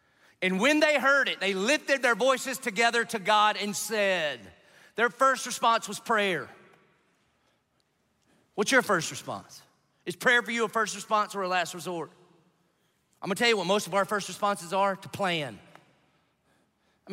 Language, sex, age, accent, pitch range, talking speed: English, male, 40-59, American, 190-230 Hz, 170 wpm